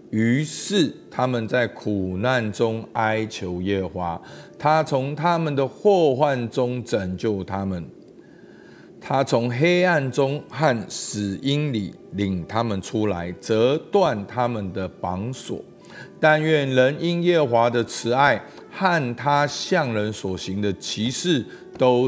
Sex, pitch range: male, 100-140 Hz